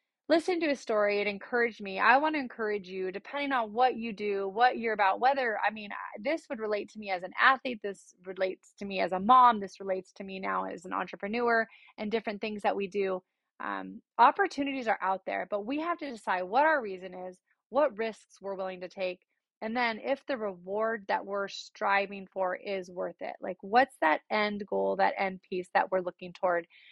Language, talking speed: English, 215 wpm